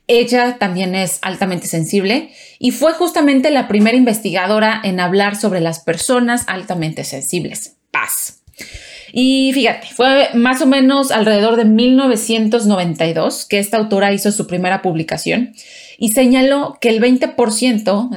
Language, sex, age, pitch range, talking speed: Spanish, female, 30-49, 190-250 Hz, 130 wpm